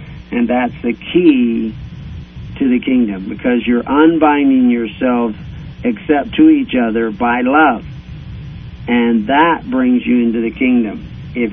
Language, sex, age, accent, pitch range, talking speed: English, male, 50-69, American, 115-150 Hz, 130 wpm